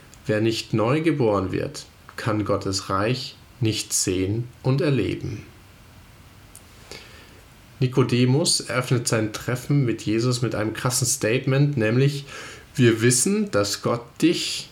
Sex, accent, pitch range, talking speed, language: male, German, 105-130 Hz, 115 wpm, German